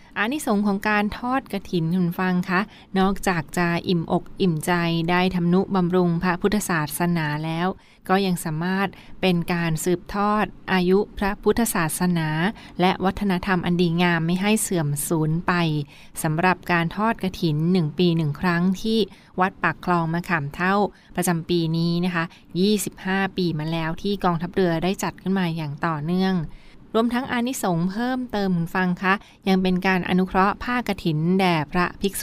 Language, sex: Thai, female